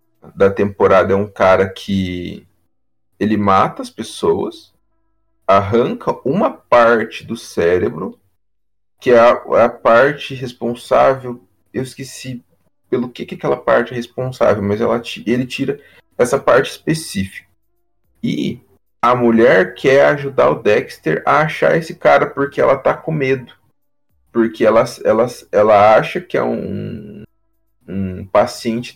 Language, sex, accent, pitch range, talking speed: Portuguese, male, Brazilian, 95-120 Hz, 130 wpm